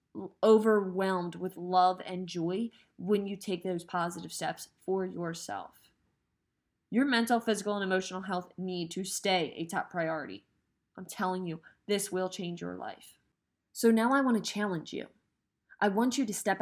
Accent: American